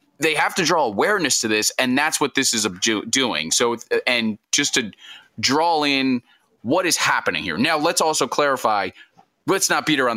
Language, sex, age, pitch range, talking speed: English, male, 20-39, 110-145 Hz, 185 wpm